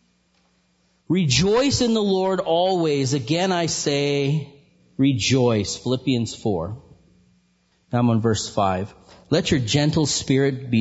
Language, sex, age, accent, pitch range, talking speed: English, male, 40-59, American, 80-135 Hz, 115 wpm